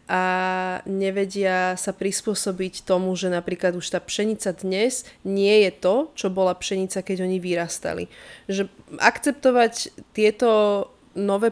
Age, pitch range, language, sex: 20-39, 180-210 Hz, Slovak, female